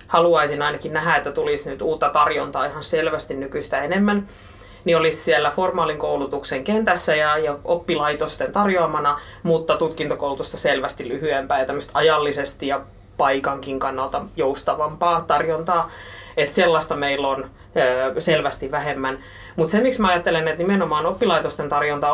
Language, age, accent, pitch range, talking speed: Finnish, 30-49, native, 145-185 Hz, 135 wpm